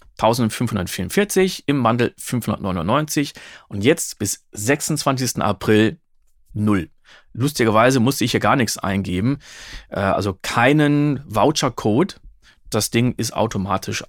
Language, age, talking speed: German, 40-59, 100 wpm